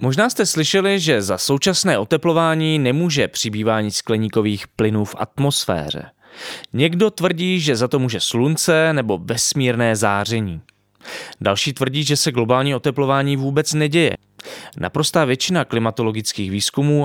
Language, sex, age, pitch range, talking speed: Czech, male, 20-39, 105-145 Hz, 125 wpm